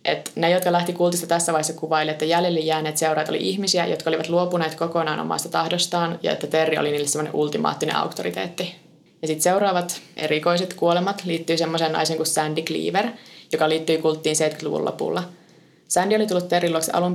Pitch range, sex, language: 155-175 Hz, female, Finnish